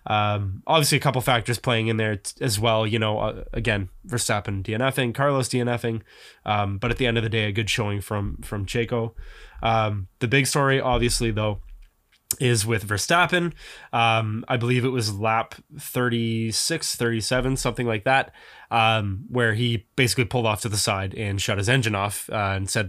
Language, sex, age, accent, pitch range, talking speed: English, male, 20-39, American, 110-135 Hz, 185 wpm